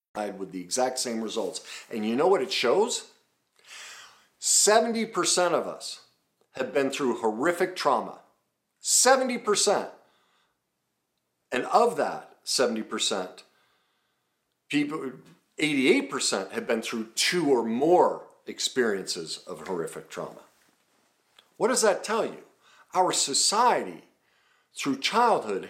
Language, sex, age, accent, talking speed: English, male, 50-69, American, 105 wpm